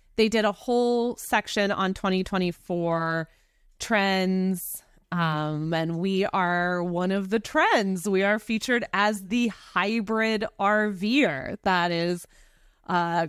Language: English